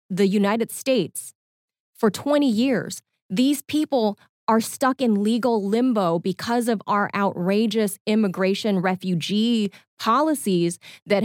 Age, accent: 30-49, American